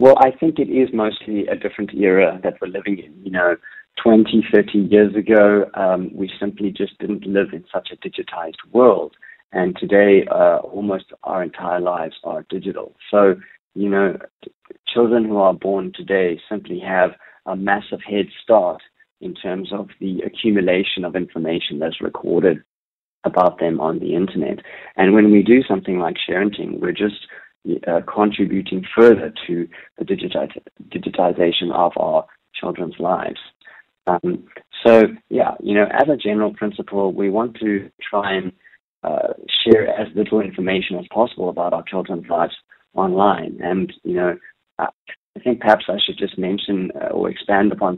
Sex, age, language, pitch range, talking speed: male, 30-49, English, 90-105 Hz, 155 wpm